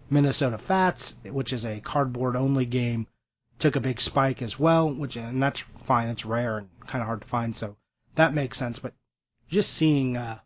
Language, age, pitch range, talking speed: English, 30-49, 115-140 Hz, 195 wpm